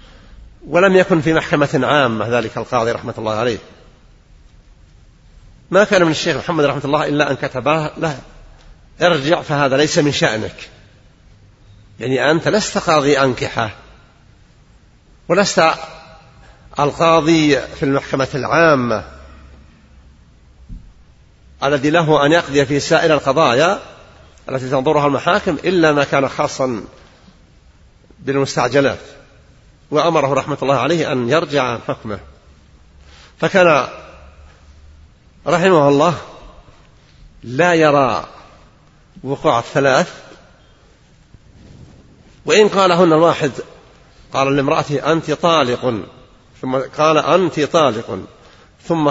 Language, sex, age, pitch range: Arabic, male, 50-69, 120-160 Hz